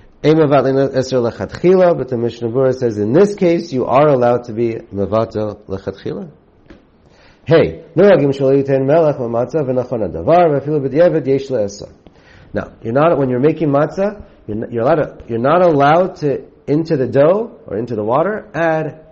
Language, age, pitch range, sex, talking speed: English, 40-59, 105-155 Hz, male, 155 wpm